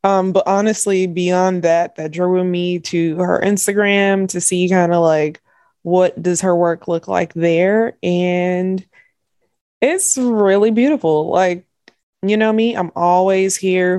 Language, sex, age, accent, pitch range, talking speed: English, female, 20-39, American, 155-205 Hz, 145 wpm